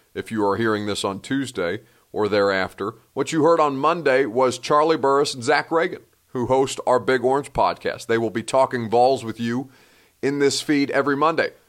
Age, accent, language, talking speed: 30-49, American, English, 195 wpm